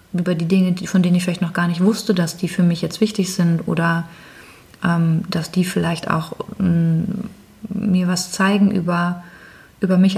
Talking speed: 175 wpm